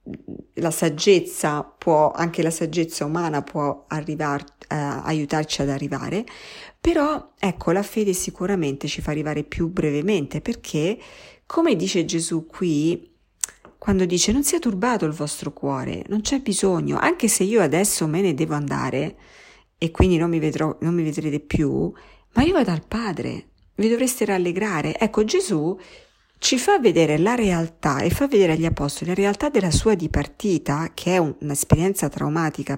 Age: 50-69